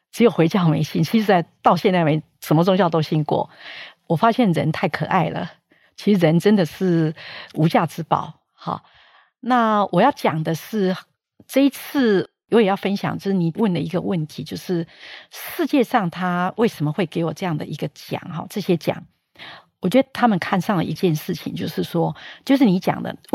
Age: 50-69